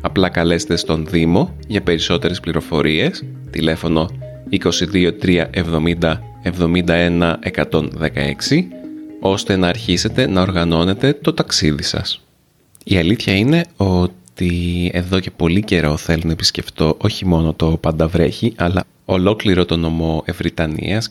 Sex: male